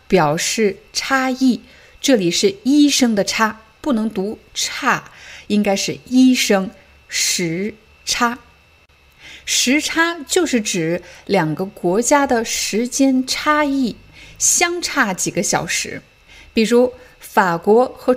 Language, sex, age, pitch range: Chinese, female, 50-69, 195-255 Hz